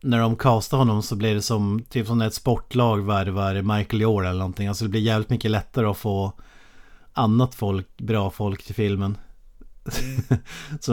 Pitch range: 105-120 Hz